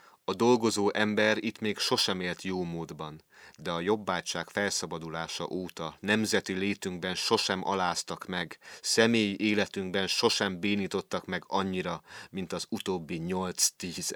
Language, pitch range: Hungarian, 95-115 Hz